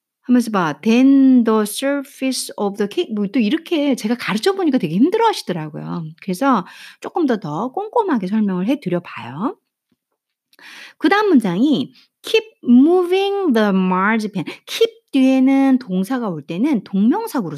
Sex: female